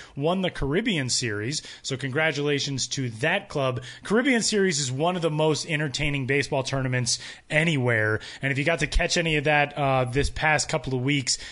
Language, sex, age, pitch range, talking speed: English, male, 20-39, 135-170 Hz, 180 wpm